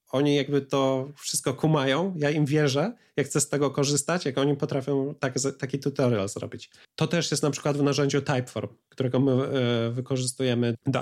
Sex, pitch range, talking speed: male, 120-140 Hz, 180 wpm